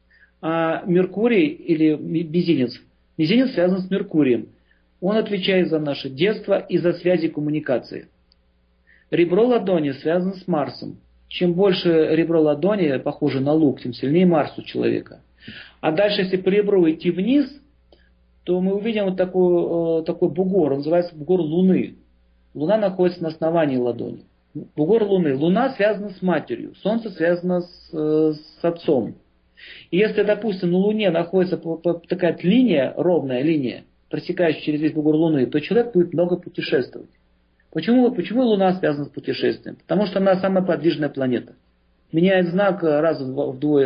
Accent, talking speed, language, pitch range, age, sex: native, 140 wpm, Russian, 150-195 Hz, 40-59, male